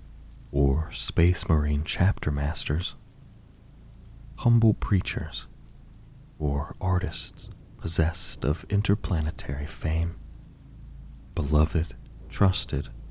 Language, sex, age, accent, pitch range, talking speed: English, male, 40-59, American, 75-100 Hz, 70 wpm